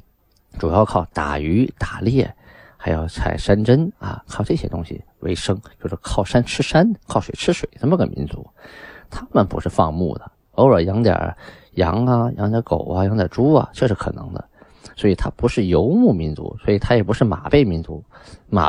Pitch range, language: 95-135 Hz, Chinese